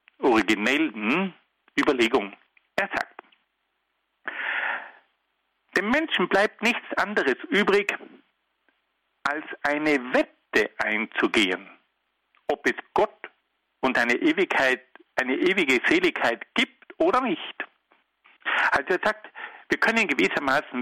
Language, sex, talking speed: German, male, 90 wpm